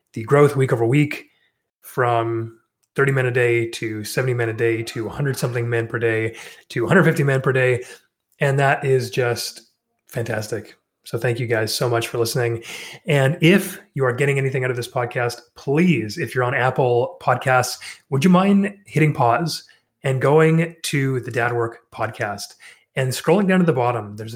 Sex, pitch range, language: male, 115-145 Hz, English